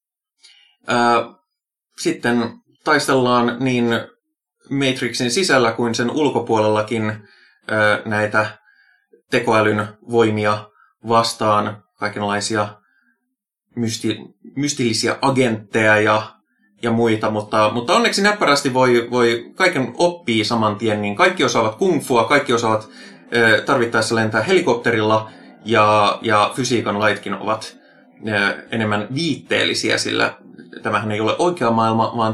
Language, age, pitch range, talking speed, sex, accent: Finnish, 20-39, 105-130 Hz, 95 wpm, male, native